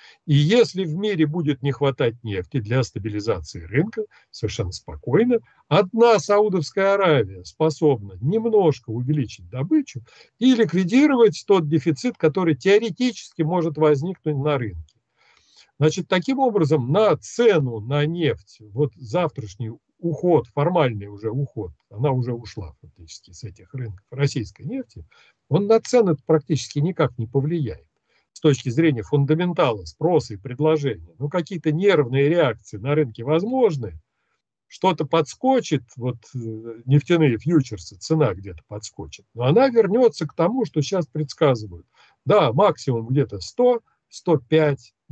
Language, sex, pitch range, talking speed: Russian, male, 120-170 Hz, 125 wpm